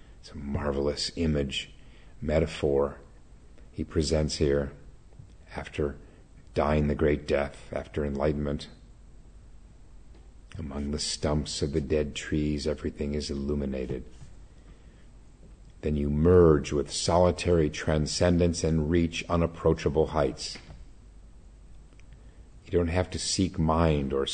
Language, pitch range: English, 70-85 Hz